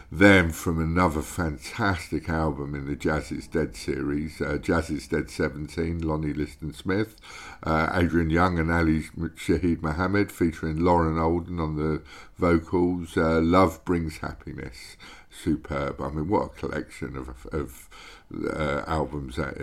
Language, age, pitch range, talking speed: English, 60-79, 80-95 Hz, 140 wpm